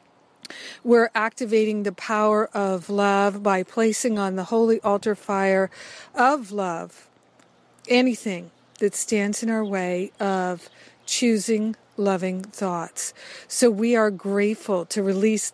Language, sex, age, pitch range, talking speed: English, female, 50-69, 195-220 Hz, 120 wpm